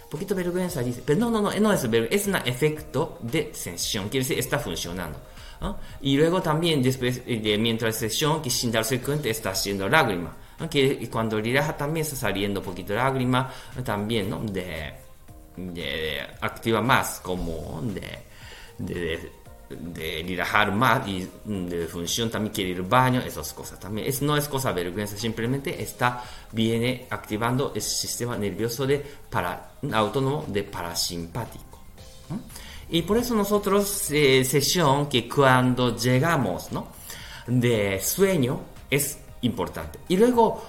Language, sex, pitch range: Japanese, male, 105-150 Hz